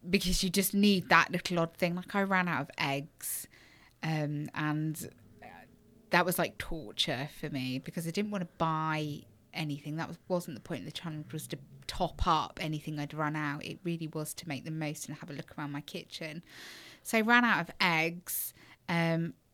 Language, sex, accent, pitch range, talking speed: English, female, British, 160-200 Hz, 205 wpm